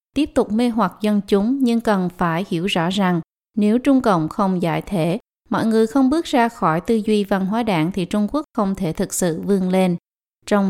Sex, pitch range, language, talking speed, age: female, 185-230 Hz, Vietnamese, 220 wpm, 20-39